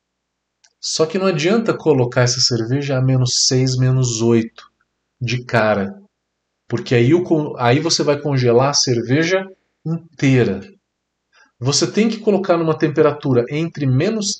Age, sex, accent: 40-59, male, Brazilian